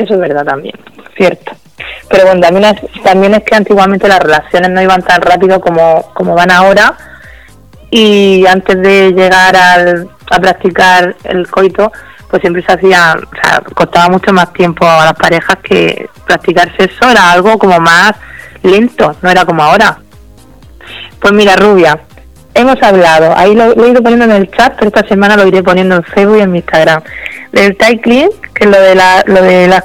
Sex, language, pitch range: female, Spanish, 180-210 Hz